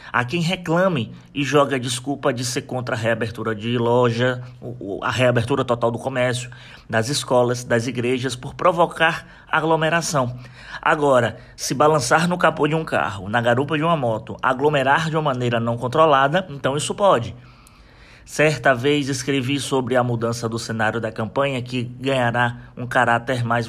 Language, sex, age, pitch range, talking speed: Portuguese, male, 20-39, 120-155 Hz, 155 wpm